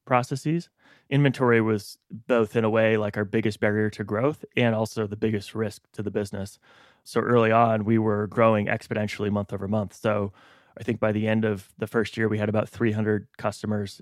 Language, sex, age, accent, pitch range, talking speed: English, male, 20-39, American, 105-125 Hz, 200 wpm